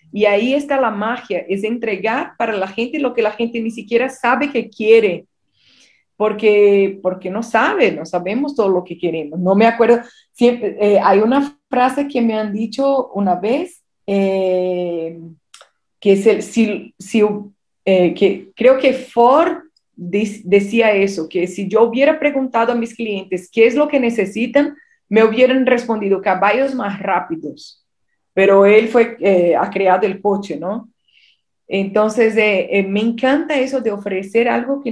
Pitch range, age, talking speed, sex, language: 195-250 Hz, 30-49, 165 wpm, female, Spanish